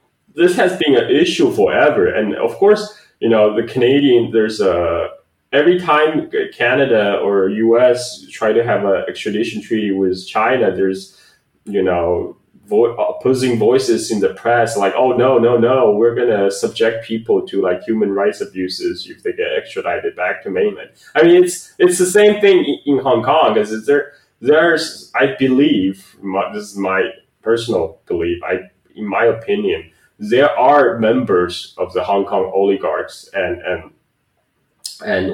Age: 20-39